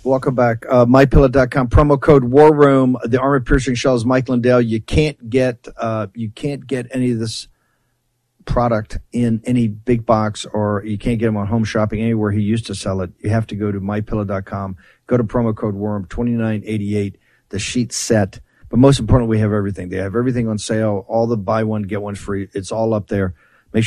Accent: American